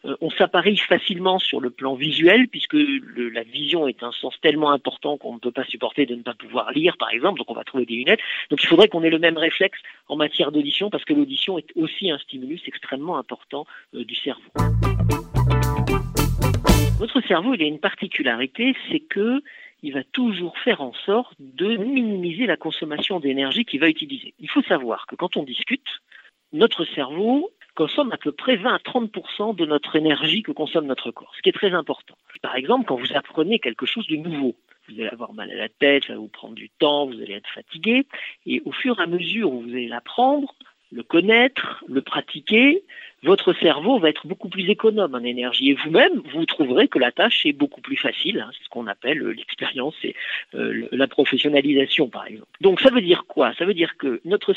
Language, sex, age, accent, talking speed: French, male, 50-69, French, 205 wpm